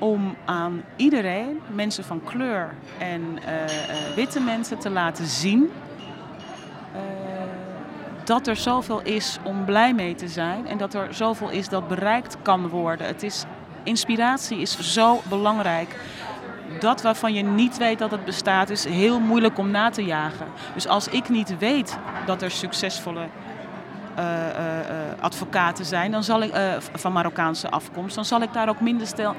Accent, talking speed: Dutch, 160 wpm